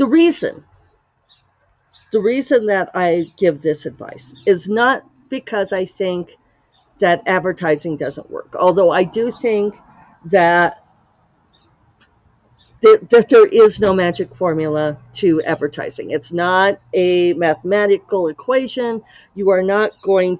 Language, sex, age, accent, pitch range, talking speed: English, female, 50-69, American, 165-205 Hz, 120 wpm